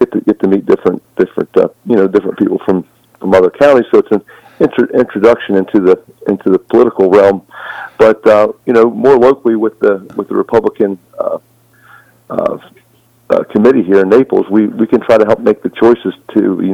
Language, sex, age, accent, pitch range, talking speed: English, male, 50-69, American, 90-115 Hz, 200 wpm